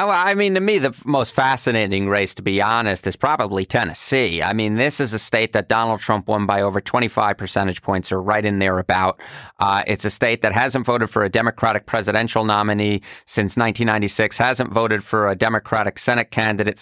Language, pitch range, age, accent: English, 105-130 Hz, 30-49, American